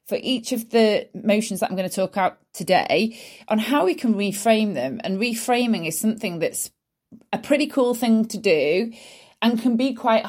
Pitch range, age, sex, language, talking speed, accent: 170-230 Hz, 30-49, female, English, 190 wpm, British